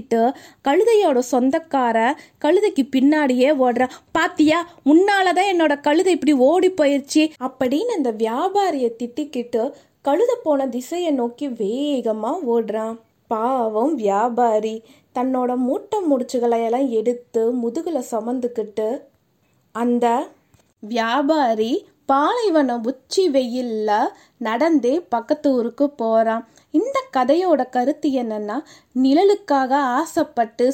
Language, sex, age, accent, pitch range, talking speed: Tamil, female, 20-39, native, 240-310 Hz, 60 wpm